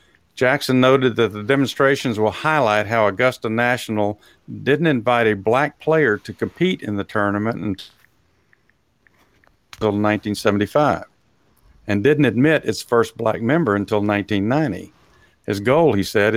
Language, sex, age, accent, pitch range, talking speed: English, male, 50-69, American, 100-125 Hz, 130 wpm